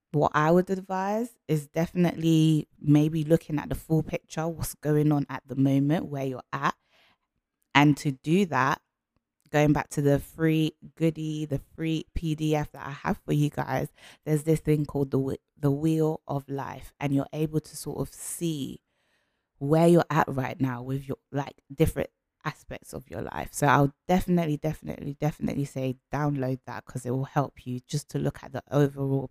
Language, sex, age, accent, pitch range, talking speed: English, female, 20-39, British, 135-155 Hz, 180 wpm